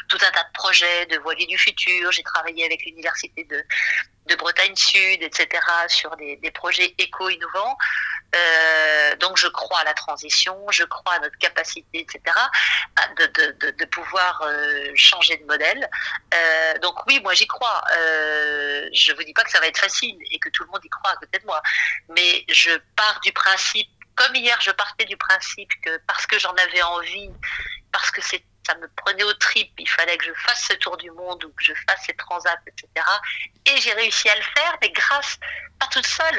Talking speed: 200 wpm